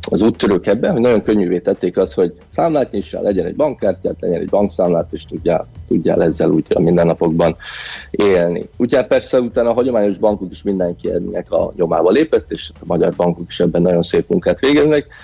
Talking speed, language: 180 wpm, Hungarian